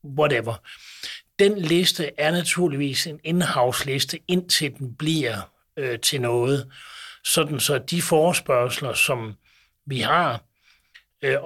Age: 60-79